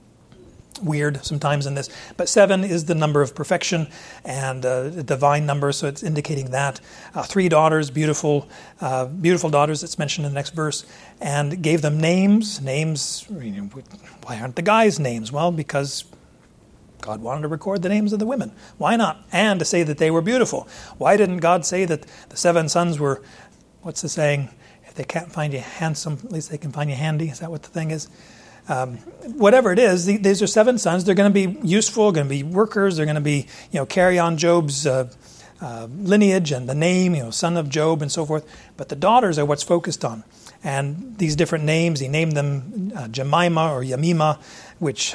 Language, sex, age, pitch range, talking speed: English, male, 40-59, 145-180 Hz, 205 wpm